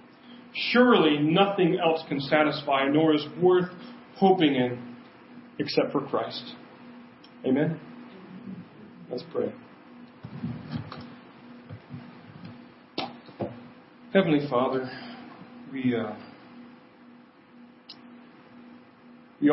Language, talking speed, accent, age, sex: English, 65 wpm, American, 40-59, male